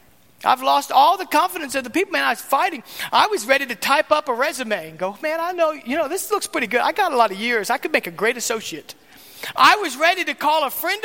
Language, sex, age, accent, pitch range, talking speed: English, male, 40-59, American, 205-280 Hz, 270 wpm